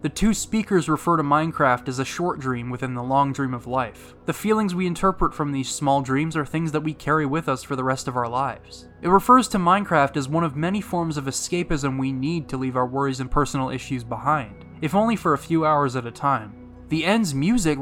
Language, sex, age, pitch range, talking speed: English, male, 20-39, 130-165 Hz, 235 wpm